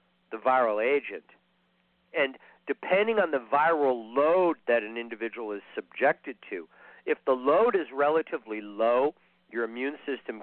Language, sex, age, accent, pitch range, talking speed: English, male, 50-69, American, 105-140 Hz, 140 wpm